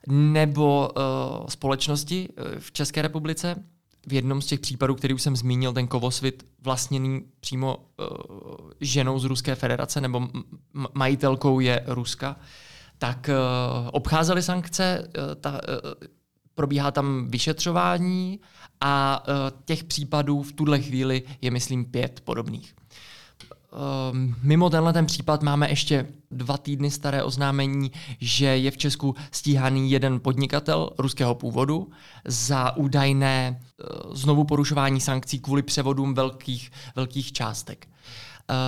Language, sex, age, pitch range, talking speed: Czech, male, 20-39, 130-150 Hz, 120 wpm